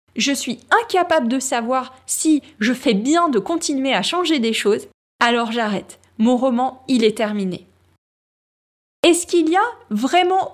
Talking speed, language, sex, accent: 155 wpm, French, female, French